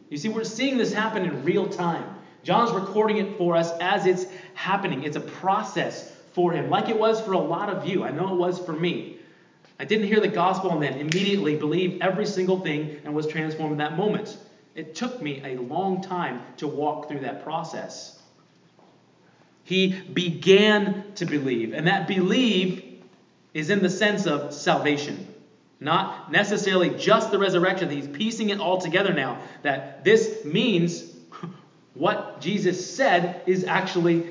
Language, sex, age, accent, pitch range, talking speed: English, male, 30-49, American, 150-195 Hz, 170 wpm